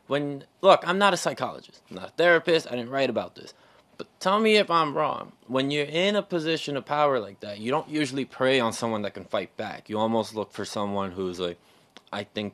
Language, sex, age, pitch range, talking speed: English, male, 20-39, 120-175 Hz, 235 wpm